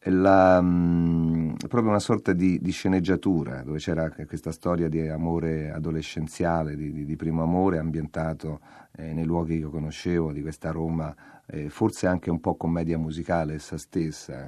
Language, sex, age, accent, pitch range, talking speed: Italian, male, 50-69, native, 80-95 Hz, 150 wpm